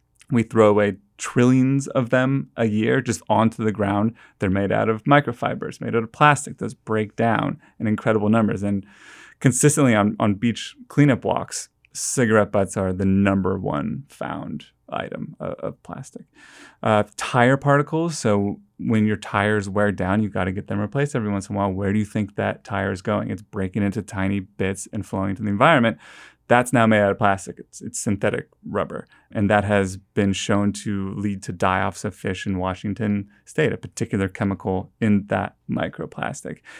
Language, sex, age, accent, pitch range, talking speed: English, male, 30-49, American, 100-115 Hz, 185 wpm